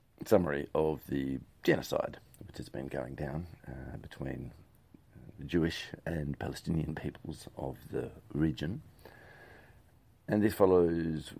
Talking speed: 115 wpm